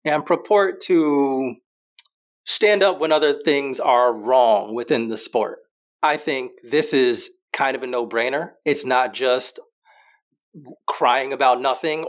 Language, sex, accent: English, male, American